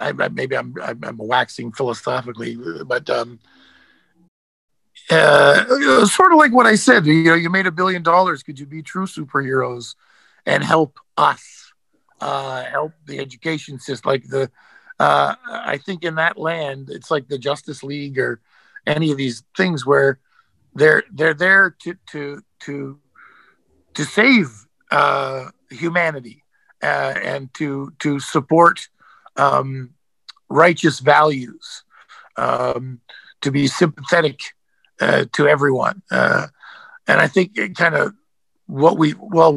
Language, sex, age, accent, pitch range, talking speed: English, male, 50-69, American, 135-170 Hz, 135 wpm